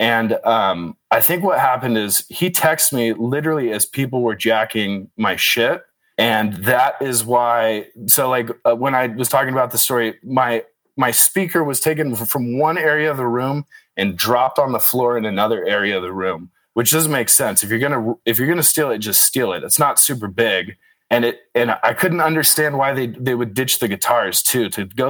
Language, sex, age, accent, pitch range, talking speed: English, male, 20-39, American, 110-140 Hz, 215 wpm